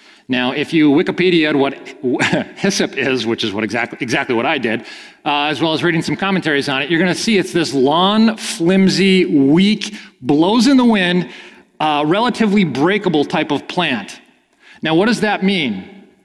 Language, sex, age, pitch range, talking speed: English, male, 40-59, 130-190 Hz, 175 wpm